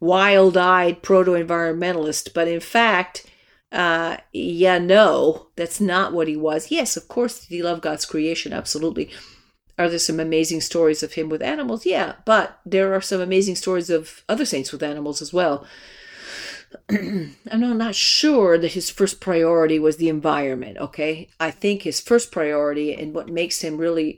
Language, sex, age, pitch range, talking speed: English, female, 50-69, 160-195 Hz, 165 wpm